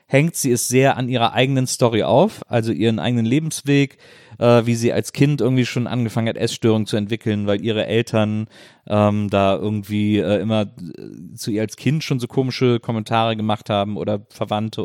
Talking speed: 180 wpm